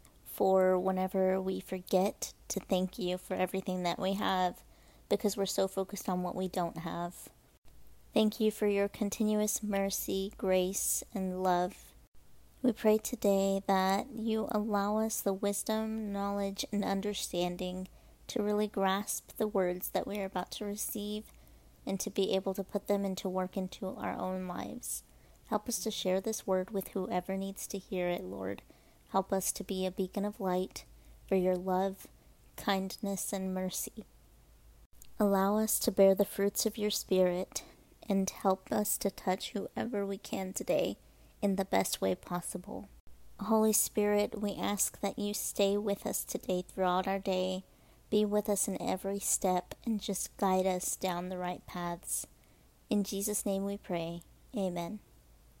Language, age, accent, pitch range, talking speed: English, 30-49, American, 185-205 Hz, 160 wpm